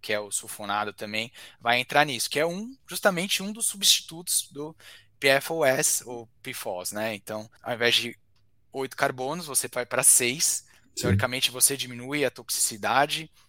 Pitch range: 110-140 Hz